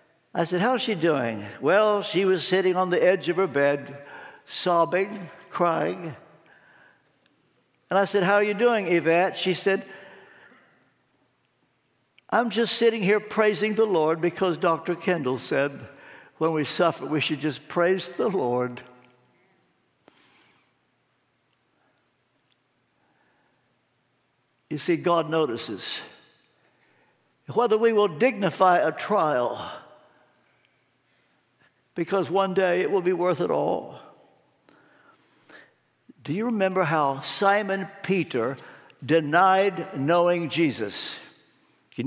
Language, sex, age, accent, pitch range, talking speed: English, male, 60-79, American, 165-210 Hz, 110 wpm